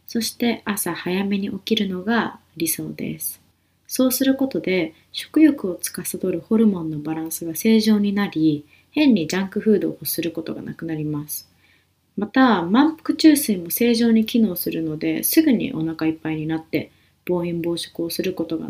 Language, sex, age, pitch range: Japanese, female, 20-39, 165-240 Hz